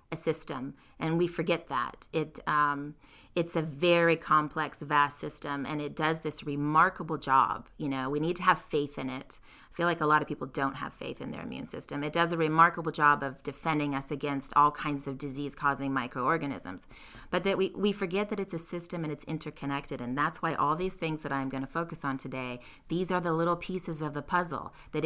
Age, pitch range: 30-49, 140-170 Hz